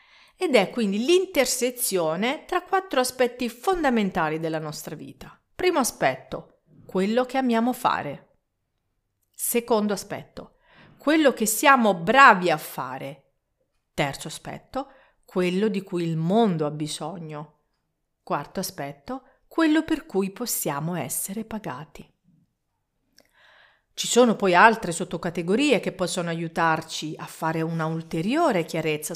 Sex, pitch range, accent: female, 165-245 Hz, native